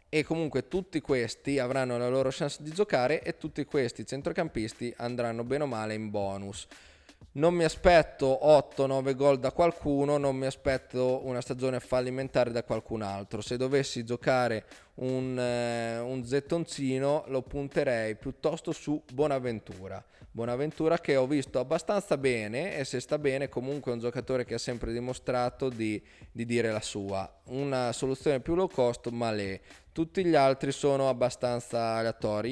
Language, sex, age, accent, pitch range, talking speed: Italian, male, 20-39, native, 115-140 Hz, 155 wpm